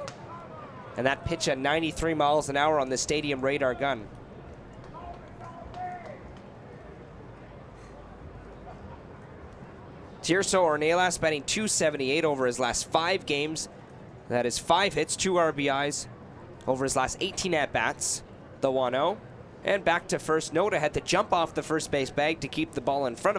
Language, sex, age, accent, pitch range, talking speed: English, male, 20-39, American, 140-175 Hz, 140 wpm